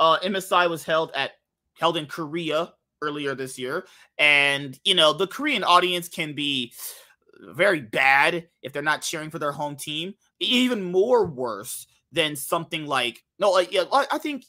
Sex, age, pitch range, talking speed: male, 30-49, 135-175 Hz, 160 wpm